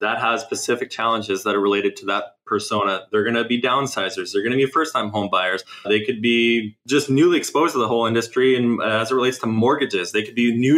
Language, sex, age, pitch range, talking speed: English, male, 20-39, 105-125 Hz, 235 wpm